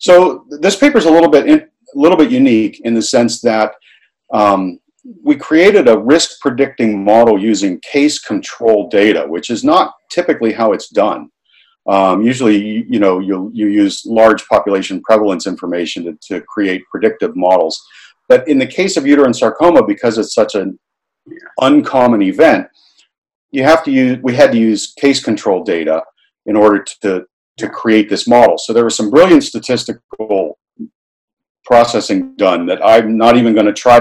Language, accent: English, American